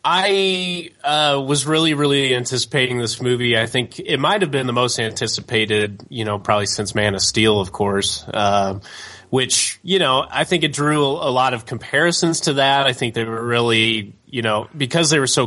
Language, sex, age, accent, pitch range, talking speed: English, male, 30-49, American, 105-135 Hz, 200 wpm